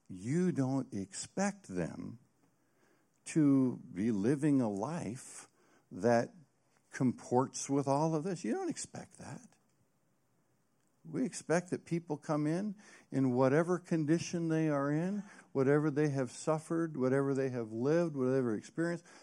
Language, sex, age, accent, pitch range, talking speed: English, male, 60-79, American, 100-155 Hz, 130 wpm